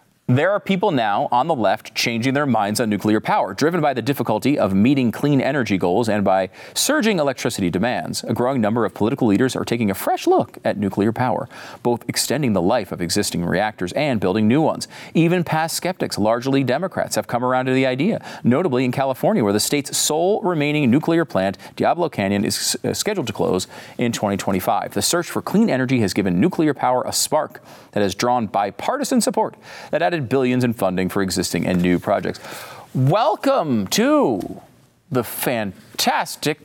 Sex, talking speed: male, 180 wpm